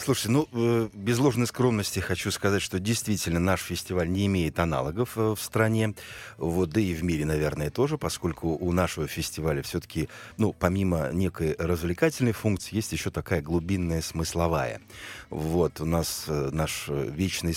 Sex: male